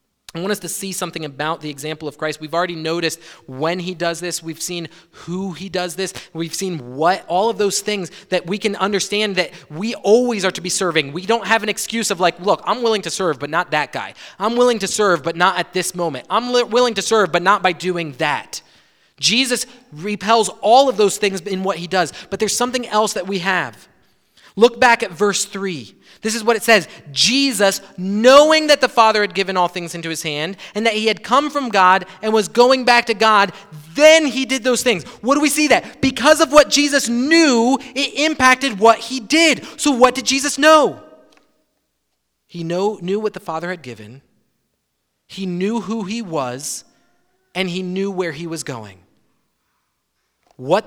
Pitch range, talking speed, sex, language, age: 165-230 Hz, 205 wpm, male, English, 30-49